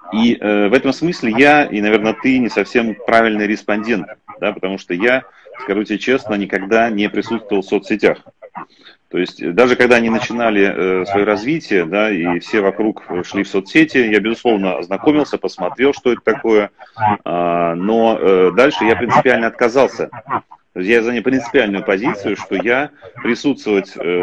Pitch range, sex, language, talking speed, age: 95-120 Hz, male, Russian, 155 wpm, 30-49